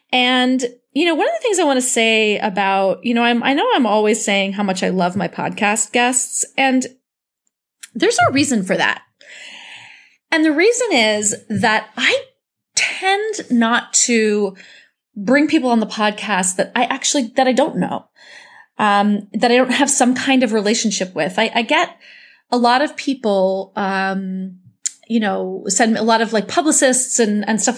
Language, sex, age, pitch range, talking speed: English, female, 30-49, 200-255 Hz, 180 wpm